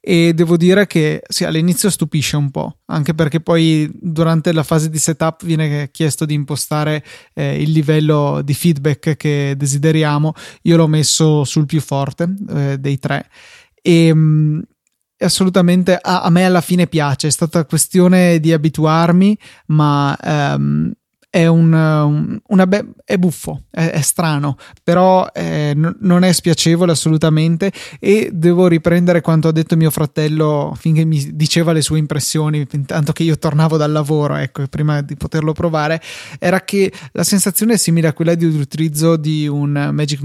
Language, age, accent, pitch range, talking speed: Italian, 20-39, native, 150-175 Hz, 160 wpm